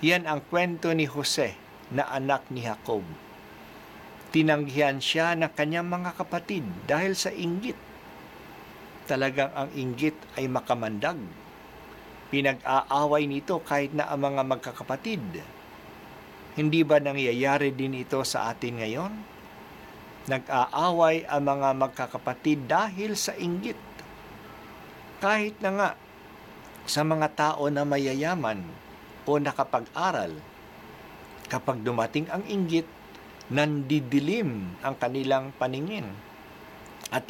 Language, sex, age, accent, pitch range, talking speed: Filipino, male, 50-69, native, 130-165 Hz, 105 wpm